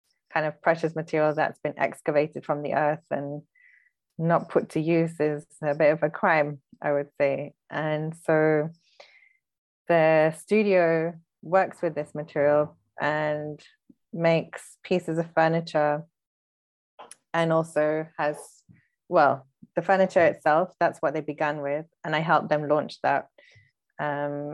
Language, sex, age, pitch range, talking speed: English, female, 20-39, 150-165 Hz, 135 wpm